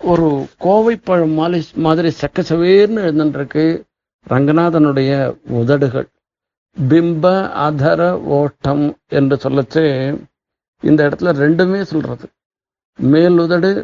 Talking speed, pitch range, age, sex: 85 wpm, 150-185 Hz, 60-79, male